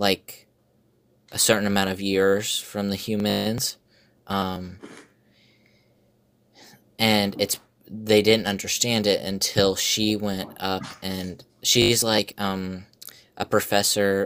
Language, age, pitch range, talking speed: English, 20-39, 95-110 Hz, 110 wpm